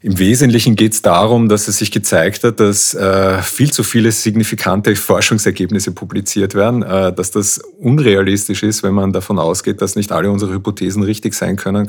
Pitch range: 95-110 Hz